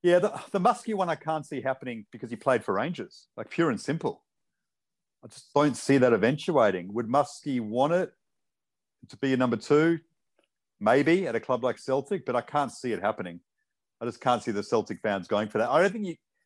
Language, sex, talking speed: English, male, 215 wpm